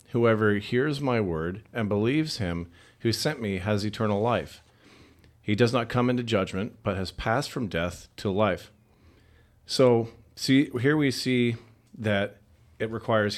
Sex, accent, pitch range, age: male, American, 105-120 Hz, 40-59